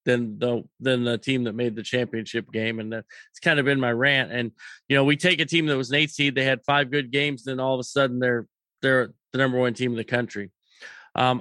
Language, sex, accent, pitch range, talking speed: English, male, American, 130-165 Hz, 265 wpm